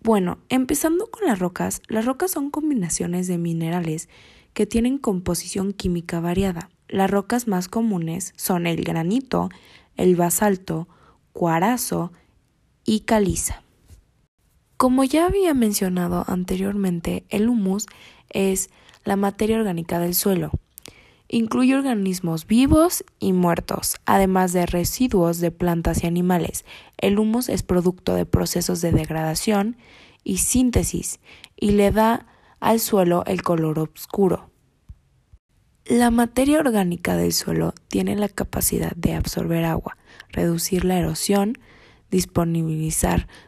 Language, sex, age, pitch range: Spanish, female, 20-39, 170-220 Hz